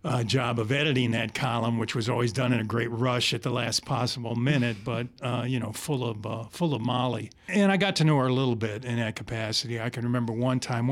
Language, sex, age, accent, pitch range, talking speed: English, male, 50-69, American, 115-140 Hz, 255 wpm